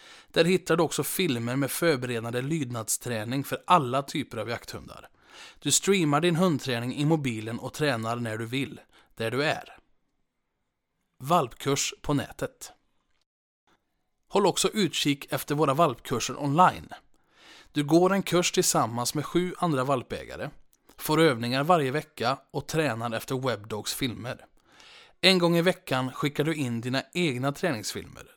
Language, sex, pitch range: Swedish, male, 125-165 Hz